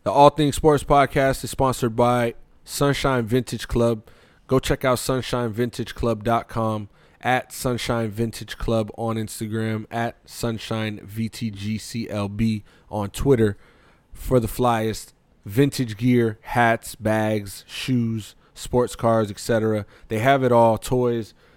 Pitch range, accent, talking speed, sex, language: 110-130 Hz, American, 110 wpm, male, English